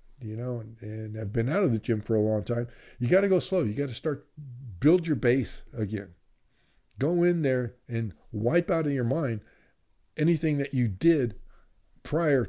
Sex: male